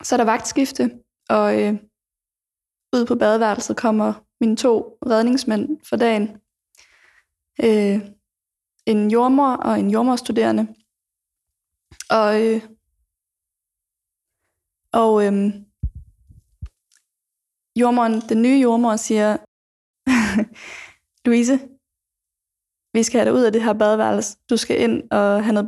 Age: 20-39